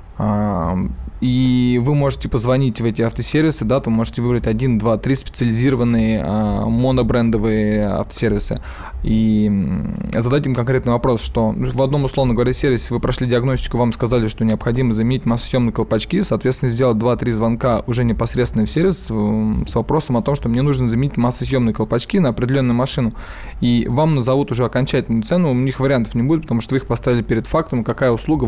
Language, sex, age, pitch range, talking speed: Russian, male, 20-39, 115-135 Hz, 165 wpm